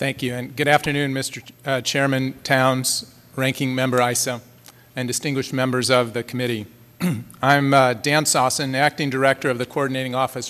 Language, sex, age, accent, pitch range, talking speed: English, male, 40-59, American, 120-140 Hz, 160 wpm